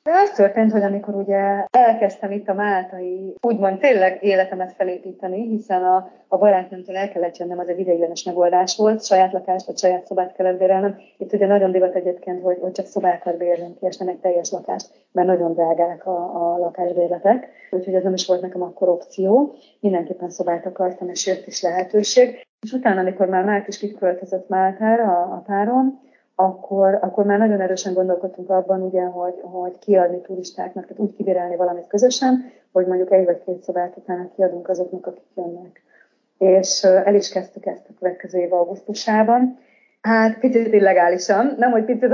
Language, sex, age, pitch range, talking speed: Hungarian, female, 30-49, 180-210 Hz, 170 wpm